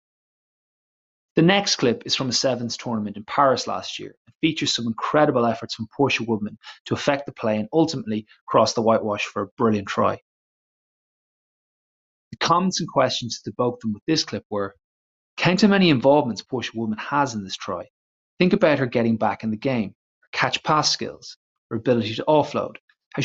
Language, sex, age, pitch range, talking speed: English, male, 30-49, 110-140 Hz, 185 wpm